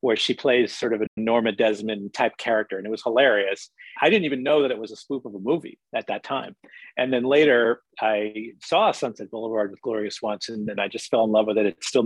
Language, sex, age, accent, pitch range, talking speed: English, male, 40-59, American, 110-130 Hz, 240 wpm